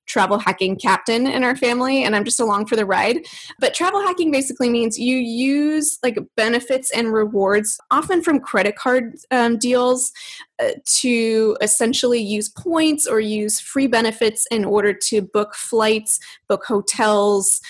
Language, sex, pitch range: English, female, 200-250 Hz